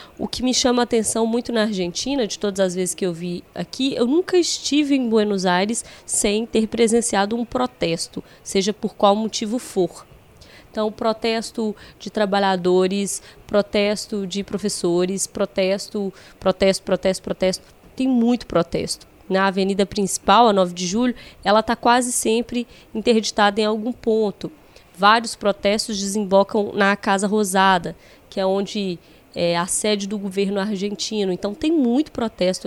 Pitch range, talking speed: 190-230 Hz, 145 wpm